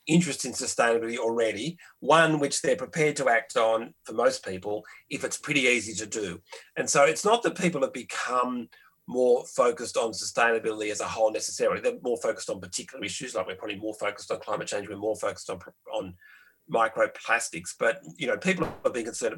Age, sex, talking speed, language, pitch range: 40-59, male, 195 wpm, Danish, 115-165 Hz